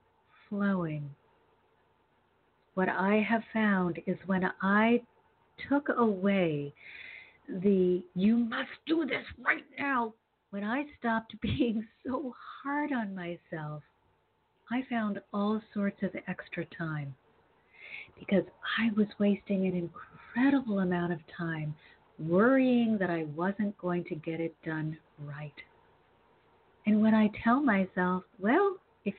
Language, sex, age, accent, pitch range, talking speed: English, female, 50-69, American, 175-230 Hz, 120 wpm